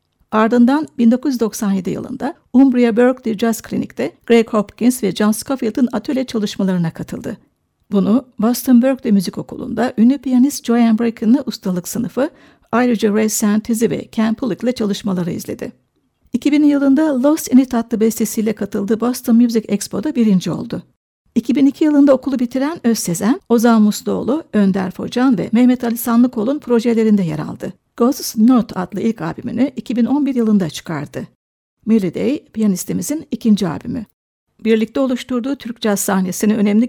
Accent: native